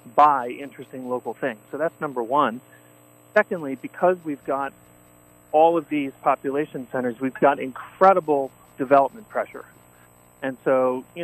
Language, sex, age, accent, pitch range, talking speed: English, male, 40-59, American, 115-150 Hz, 135 wpm